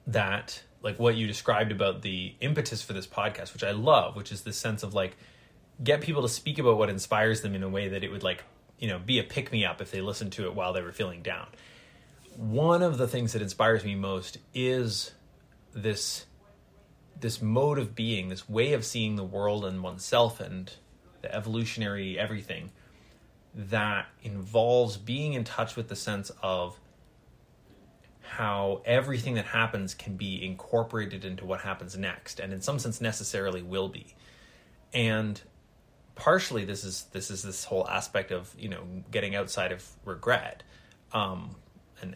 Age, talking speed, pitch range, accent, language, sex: 20-39, 175 wpm, 95-120 Hz, American, English, male